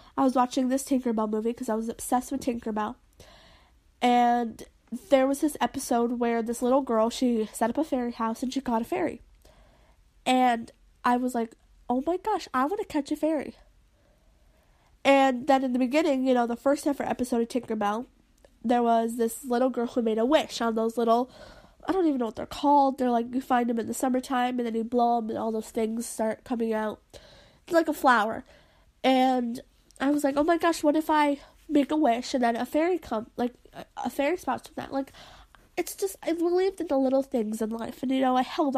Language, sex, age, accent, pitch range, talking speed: English, female, 20-39, American, 235-285 Hz, 220 wpm